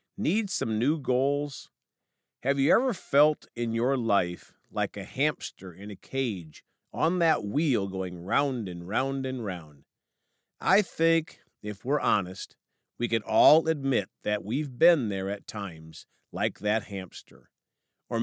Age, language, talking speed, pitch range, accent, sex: 50-69, English, 150 wpm, 105-150 Hz, American, male